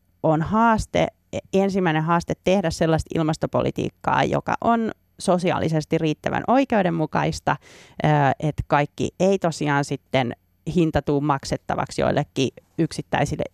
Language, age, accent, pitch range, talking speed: Finnish, 30-49, native, 135-160 Hz, 100 wpm